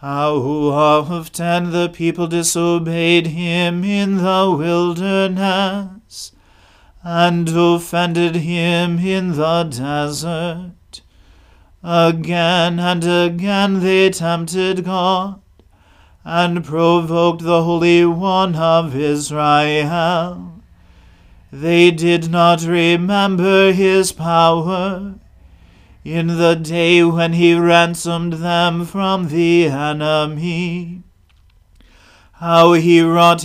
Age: 40-59